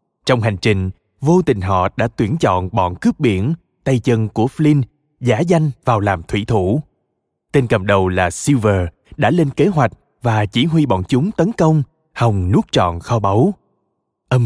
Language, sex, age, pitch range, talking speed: Vietnamese, male, 20-39, 110-160 Hz, 185 wpm